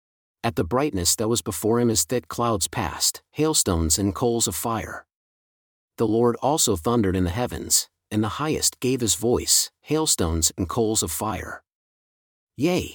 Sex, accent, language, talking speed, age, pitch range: male, American, English, 160 wpm, 40-59, 95-125 Hz